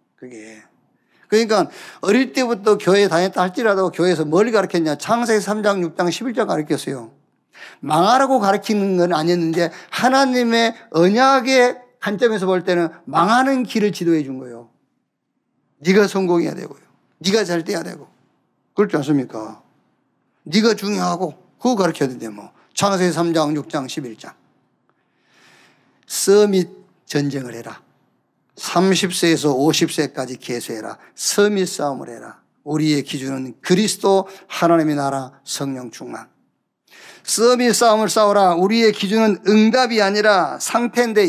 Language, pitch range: Korean, 160-220 Hz